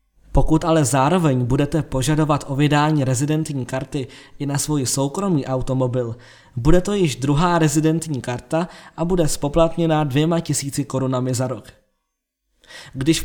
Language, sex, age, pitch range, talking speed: Czech, male, 20-39, 135-165 Hz, 135 wpm